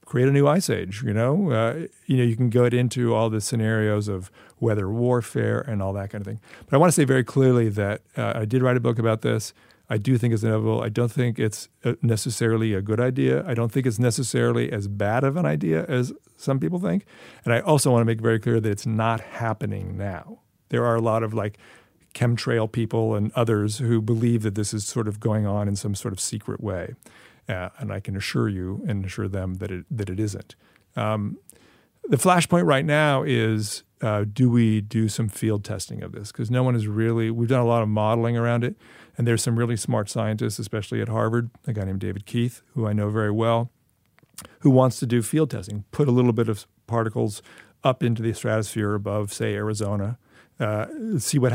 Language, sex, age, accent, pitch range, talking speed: English, male, 50-69, American, 105-125 Hz, 220 wpm